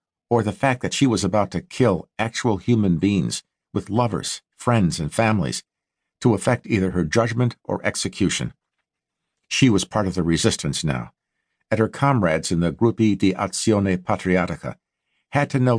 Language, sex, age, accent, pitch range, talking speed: English, male, 50-69, American, 90-120 Hz, 165 wpm